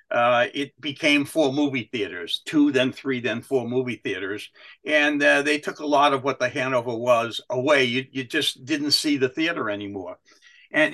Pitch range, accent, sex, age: 135-200 Hz, American, male, 60-79